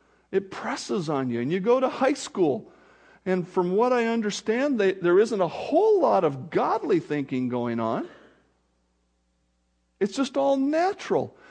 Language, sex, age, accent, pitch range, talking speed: English, male, 50-69, American, 175-275 Hz, 165 wpm